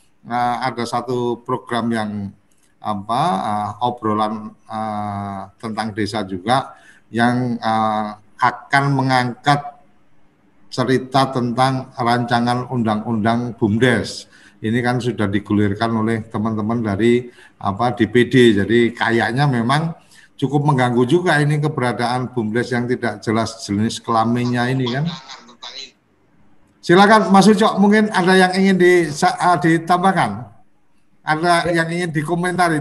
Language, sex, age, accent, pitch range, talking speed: Indonesian, male, 50-69, native, 115-155 Hz, 110 wpm